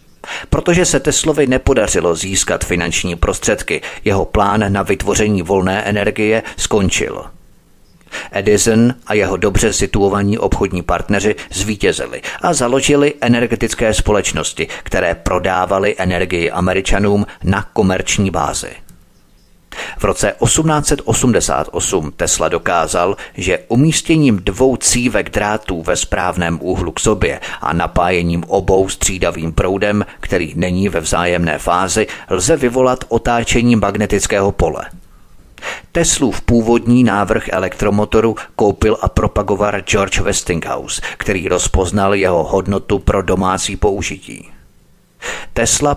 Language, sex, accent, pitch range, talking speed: Czech, male, native, 95-115 Hz, 105 wpm